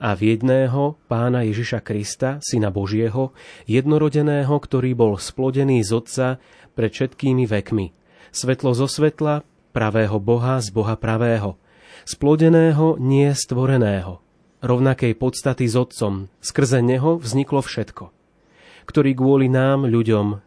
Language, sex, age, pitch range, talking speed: Slovak, male, 30-49, 110-135 Hz, 115 wpm